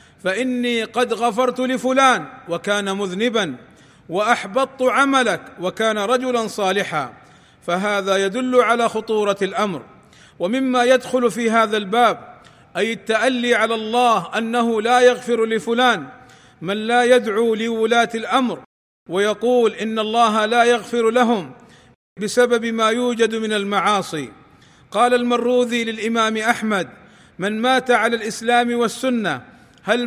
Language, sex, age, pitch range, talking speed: Arabic, male, 40-59, 210-240 Hz, 110 wpm